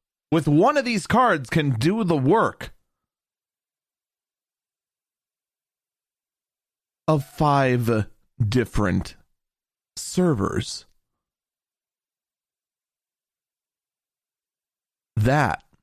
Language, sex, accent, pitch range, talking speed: English, male, American, 125-175 Hz, 55 wpm